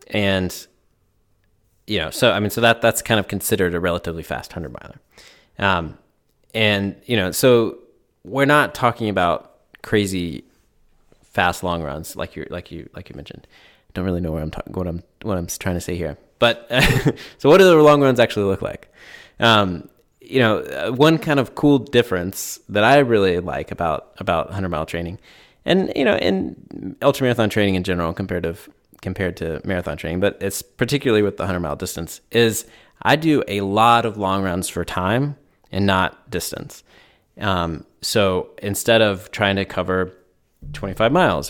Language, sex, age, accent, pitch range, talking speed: English, male, 20-39, American, 90-115 Hz, 180 wpm